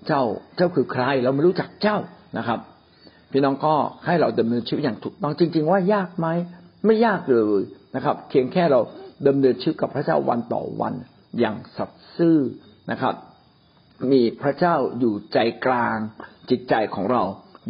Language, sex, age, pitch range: Thai, male, 60-79, 115-160 Hz